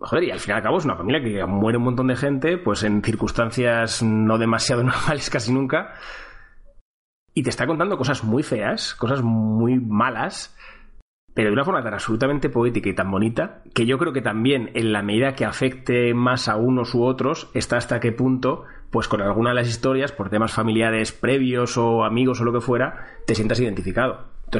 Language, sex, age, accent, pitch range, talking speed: Spanish, male, 30-49, Spanish, 110-125 Hz, 200 wpm